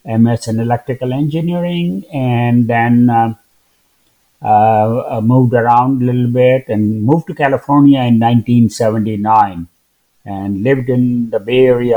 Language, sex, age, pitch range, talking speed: English, male, 60-79, 110-135 Hz, 95 wpm